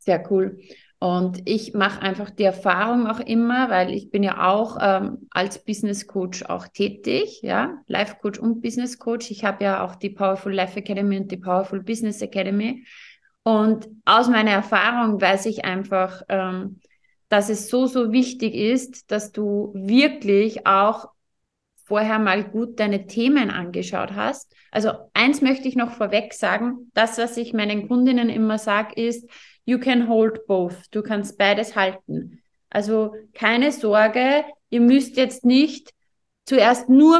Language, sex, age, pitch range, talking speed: German, female, 30-49, 210-250 Hz, 155 wpm